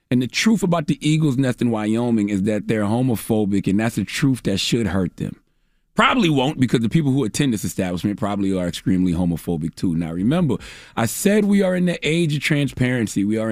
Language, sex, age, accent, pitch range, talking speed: English, male, 30-49, American, 100-145 Hz, 215 wpm